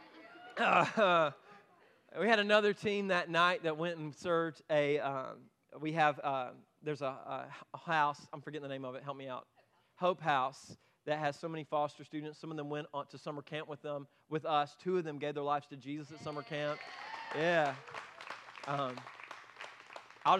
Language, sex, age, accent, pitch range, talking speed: English, male, 30-49, American, 150-175 Hz, 185 wpm